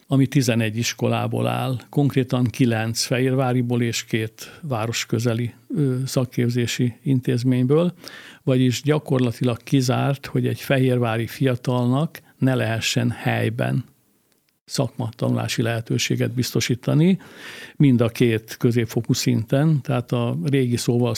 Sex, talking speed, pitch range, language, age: male, 95 wpm, 120-135 Hz, Hungarian, 60-79